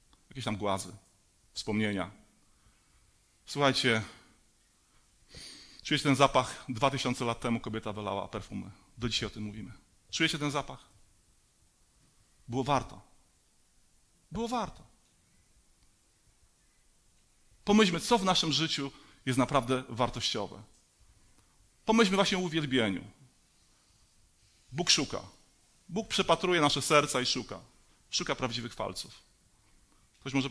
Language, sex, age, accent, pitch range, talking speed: Polish, male, 40-59, native, 105-165 Hz, 100 wpm